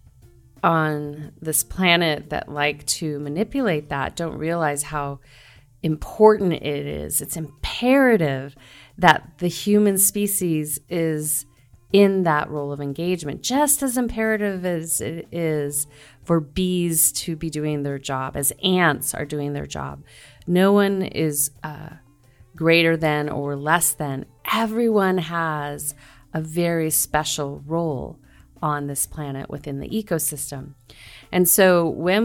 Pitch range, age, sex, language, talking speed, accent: 145-175 Hz, 30-49, female, English, 130 wpm, American